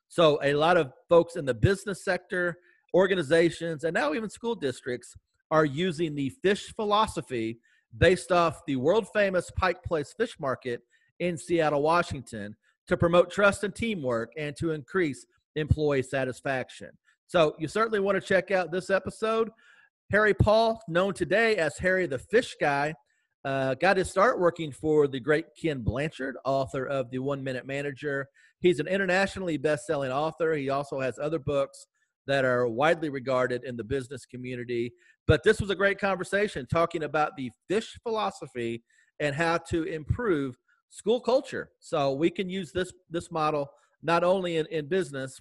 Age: 40-59